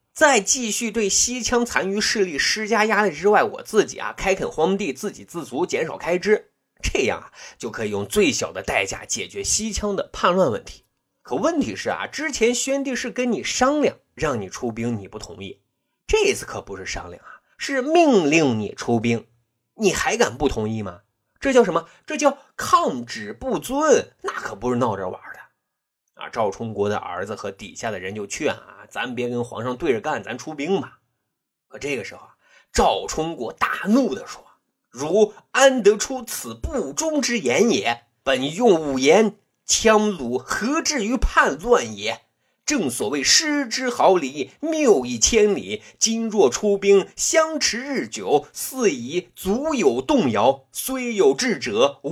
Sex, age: male, 30-49